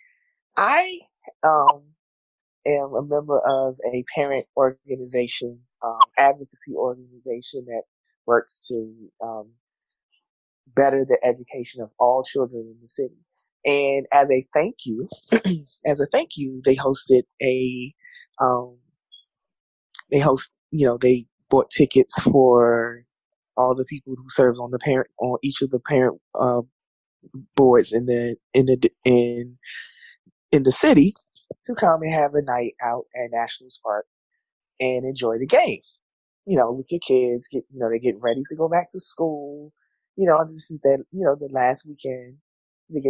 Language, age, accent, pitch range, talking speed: English, 20-39, American, 125-150 Hz, 155 wpm